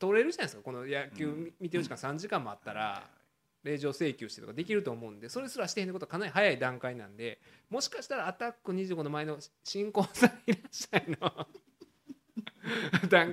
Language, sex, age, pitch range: Japanese, male, 20-39, 110-175 Hz